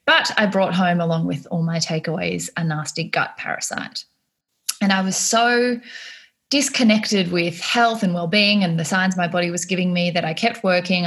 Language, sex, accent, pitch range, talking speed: English, female, Australian, 165-205 Hz, 190 wpm